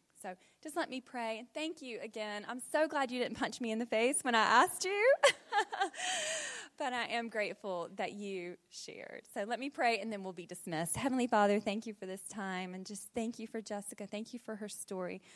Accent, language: American, English